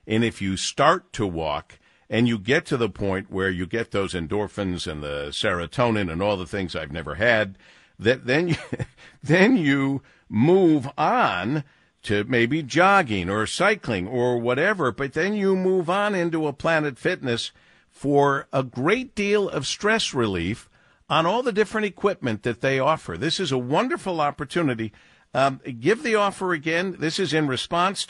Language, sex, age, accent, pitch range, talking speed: English, male, 50-69, American, 115-175 Hz, 170 wpm